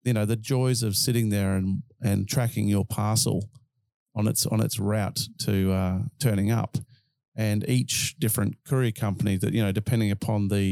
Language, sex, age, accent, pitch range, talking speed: English, male, 40-59, Australian, 105-125 Hz, 180 wpm